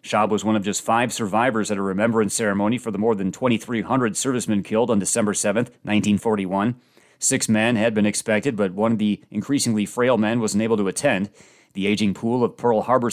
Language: English